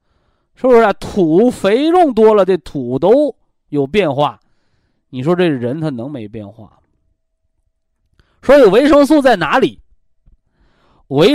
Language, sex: Chinese, male